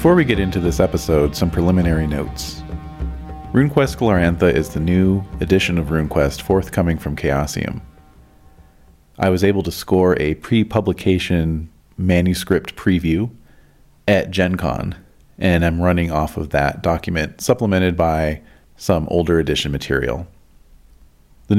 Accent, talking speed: American, 125 wpm